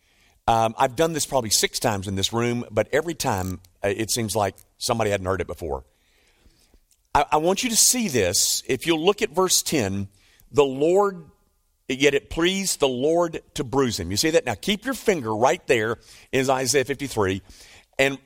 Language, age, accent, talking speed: English, 50-69, American, 190 wpm